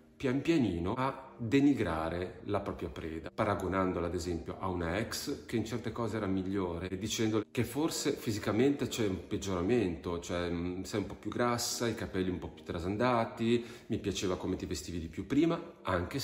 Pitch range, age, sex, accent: 85-115 Hz, 40-59, male, native